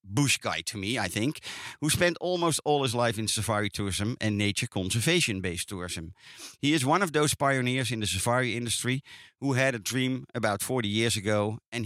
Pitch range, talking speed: 100-135 Hz, 195 wpm